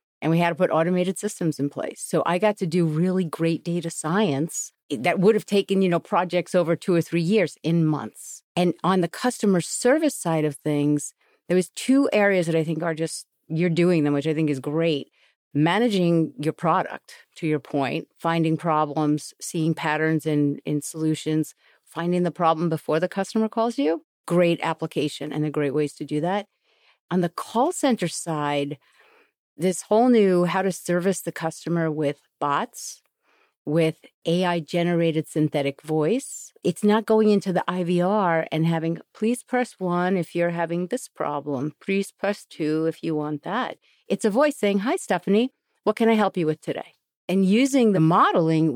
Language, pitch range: English, 160-195 Hz